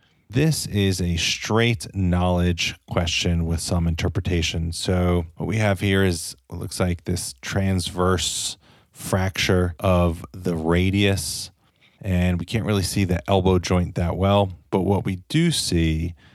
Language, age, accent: English, 30-49, American